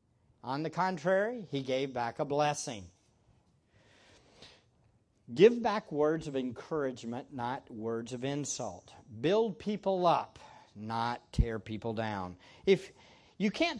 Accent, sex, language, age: American, male, English, 50-69